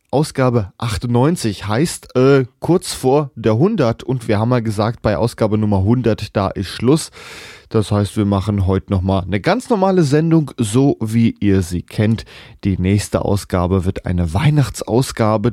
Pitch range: 95-120 Hz